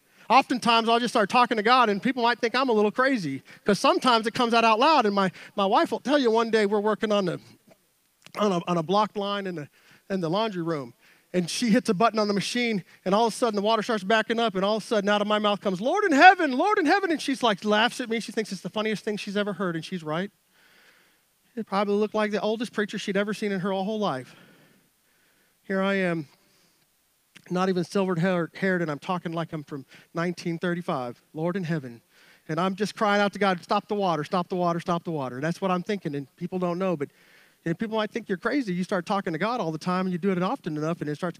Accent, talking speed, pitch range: American, 260 wpm, 170-215 Hz